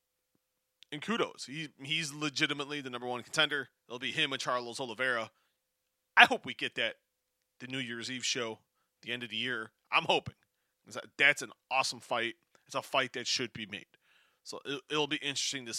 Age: 30-49